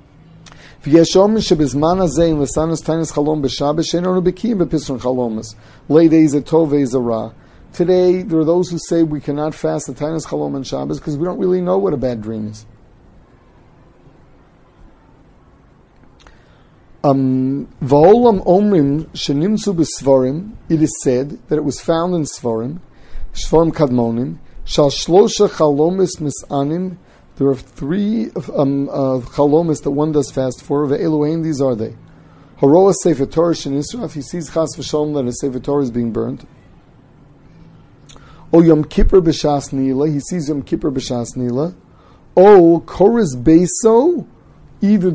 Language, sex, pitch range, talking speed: English, male, 135-170 Hz, 110 wpm